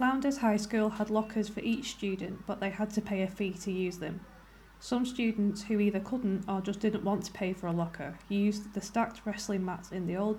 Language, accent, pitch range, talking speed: English, British, 190-215 Hz, 230 wpm